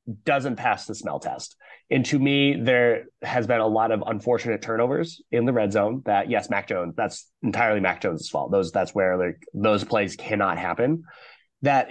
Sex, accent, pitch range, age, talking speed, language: male, American, 105-135 Hz, 30-49, 190 wpm, English